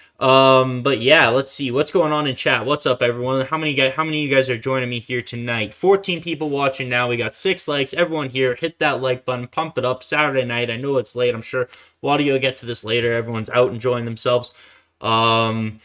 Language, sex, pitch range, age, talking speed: English, male, 120-140 Hz, 20-39, 245 wpm